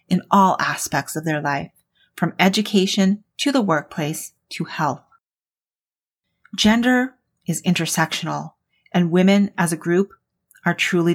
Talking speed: 125 wpm